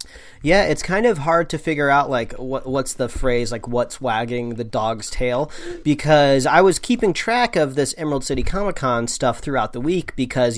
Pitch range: 115-140 Hz